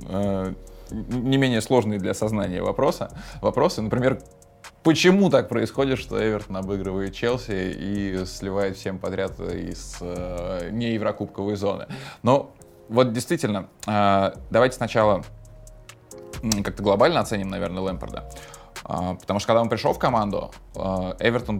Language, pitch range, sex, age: Russian, 95-115 Hz, male, 20-39